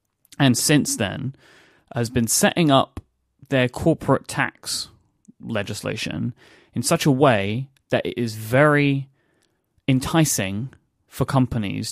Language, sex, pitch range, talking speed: English, male, 110-140 Hz, 110 wpm